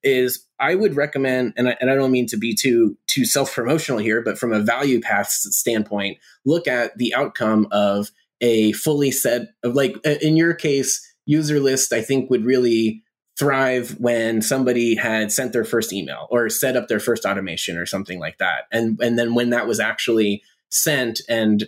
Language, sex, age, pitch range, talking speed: English, male, 20-39, 110-130 Hz, 190 wpm